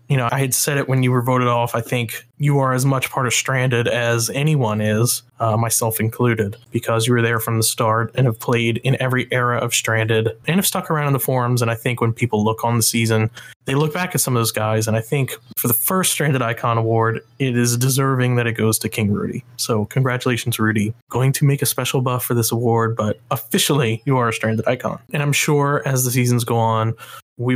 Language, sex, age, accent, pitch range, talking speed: English, male, 20-39, American, 115-135 Hz, 240 wpm